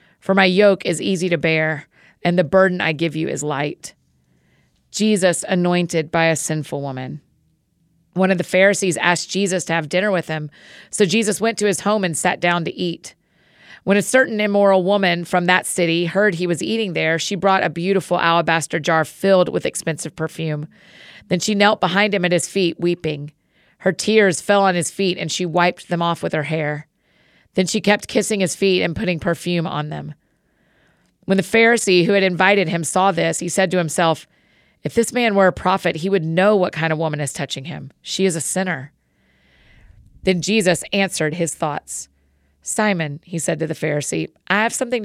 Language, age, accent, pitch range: English, 30-49, American, 160-195 Hz